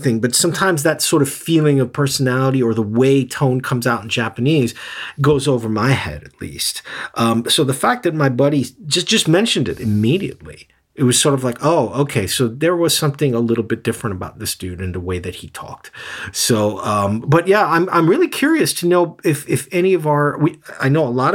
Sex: male